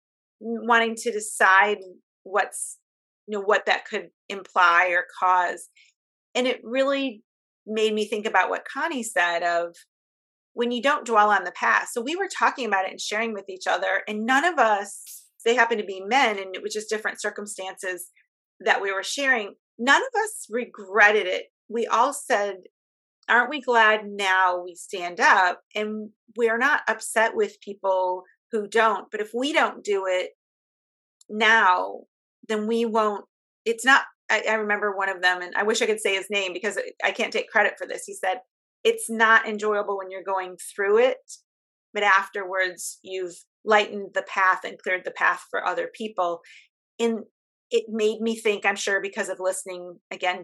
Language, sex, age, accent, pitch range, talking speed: English, female, 30-49, American, 190-235 Hz, 180 wpm